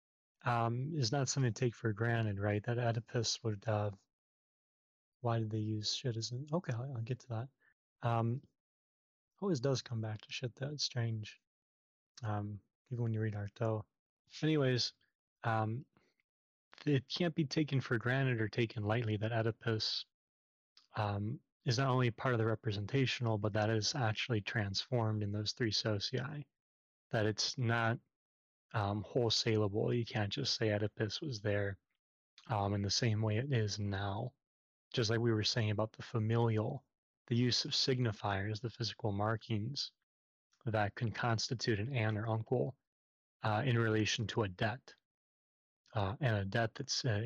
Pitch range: 105-125 Hz